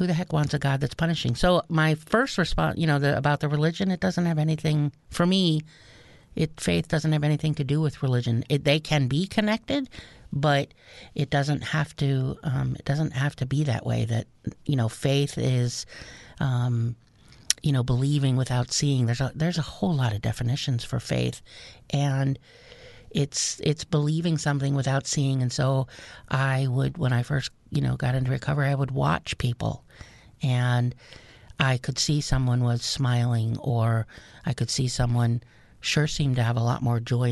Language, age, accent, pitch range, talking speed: English, 50-69, American, 120-145 Hz, 185 wpm